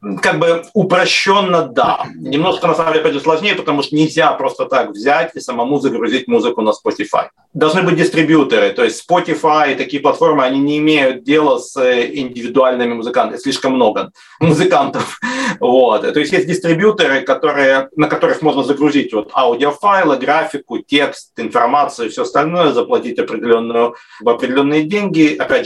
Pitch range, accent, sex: 125-170 Hz, native, male